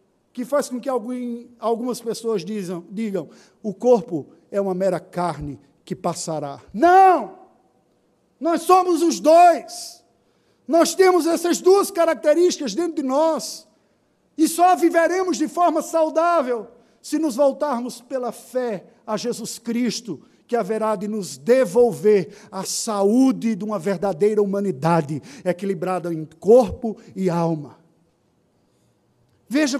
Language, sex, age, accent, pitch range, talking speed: Portuguese, male, 50-69, Brazilian, 220-305 Hz, 120 wpm